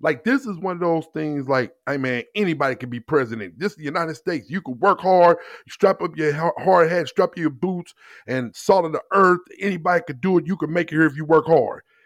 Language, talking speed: English, 250 wpm